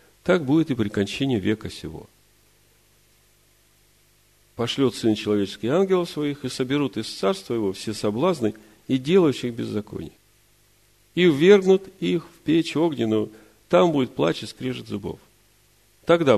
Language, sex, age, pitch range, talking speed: Russian, male, 40-59, 105-130 Hz, 130 wpm